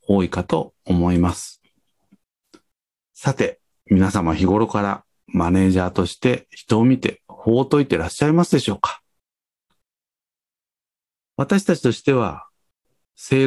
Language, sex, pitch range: Japanese, male, 90-130 Hz